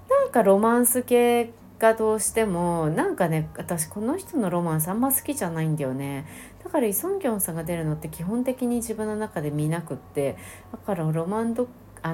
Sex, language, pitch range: female, Japanese, 150-190 Hz